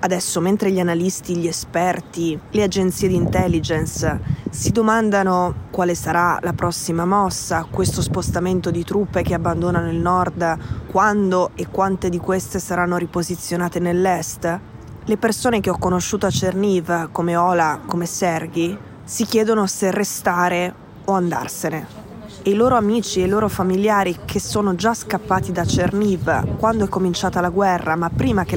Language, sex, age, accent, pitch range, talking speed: Italian, female, 20-39, native, 175-210 Hz, 150 wpm